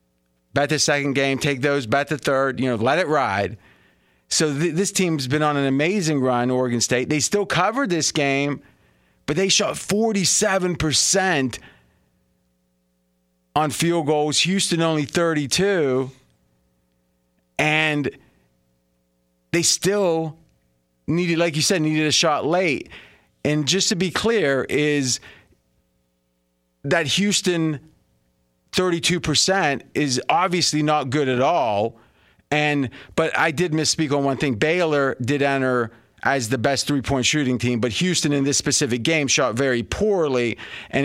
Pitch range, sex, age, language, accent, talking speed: 120-155 Hz, male, 30-49, English, American, 135 wpm